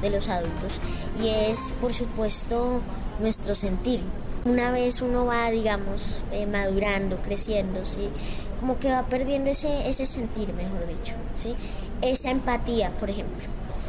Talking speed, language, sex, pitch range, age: 140 wpm, Spanish, male, 205-245 Hz, 10-29